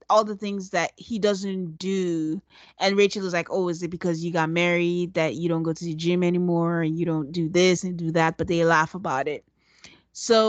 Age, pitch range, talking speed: 20-39, 180-225 Hz, 230 wpm